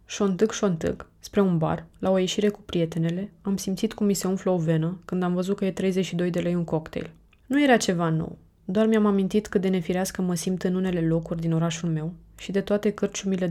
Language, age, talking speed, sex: Romanian, 20-39, 220 wpm, female